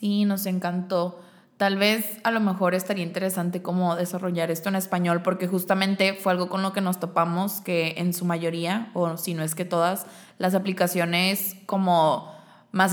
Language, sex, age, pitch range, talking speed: Spanish, female, 20-39, 175-200 Hz, 175 wpm